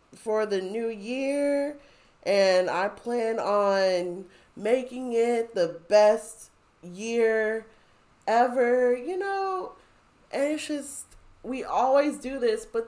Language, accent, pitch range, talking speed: English, American, 190-275 Hz, 110 wpm